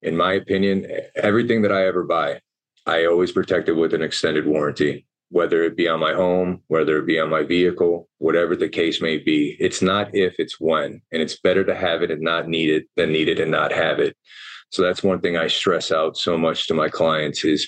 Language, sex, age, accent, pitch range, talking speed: English, male, 30-49, American, 80-95 Hz, 230 wpm